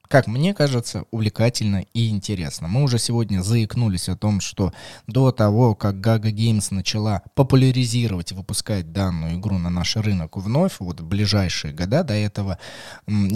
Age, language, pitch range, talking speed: 20-39, Russian, 100-130 Hz, 155 wpm